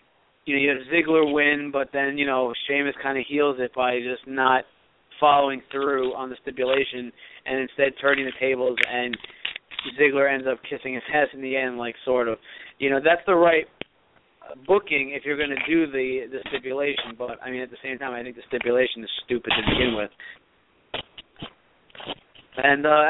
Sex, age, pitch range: male, 30-49, 130-160 Hz